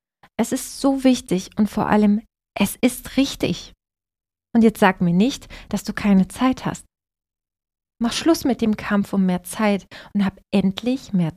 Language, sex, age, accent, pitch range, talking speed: German, female, 20-39, German, 180-235 Hz, 170 wpm